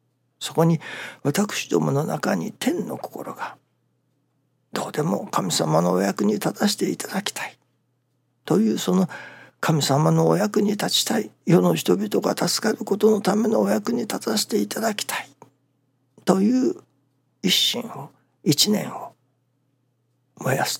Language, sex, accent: Japanese, male, native